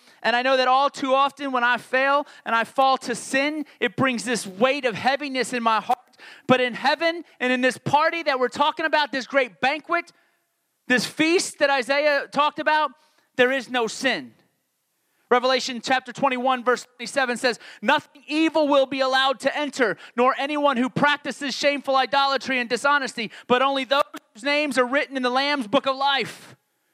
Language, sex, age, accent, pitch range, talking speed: English, male, 30-49, American, 230-275 Hz, 185 wpm